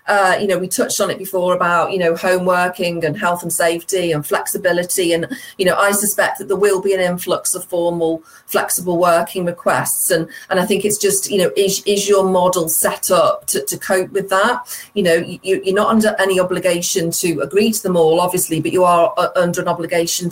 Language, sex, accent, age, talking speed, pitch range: English, female, British, 40-59, 215 wpm, 170-195 Hz